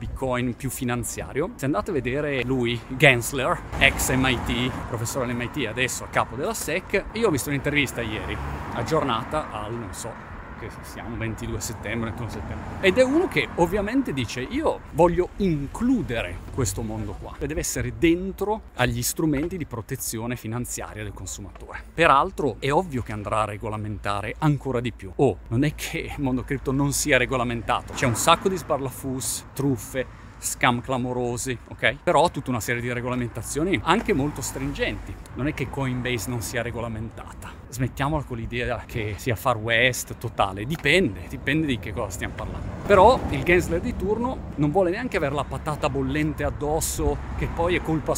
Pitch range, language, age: 115-145 Hz, Italian, 30-49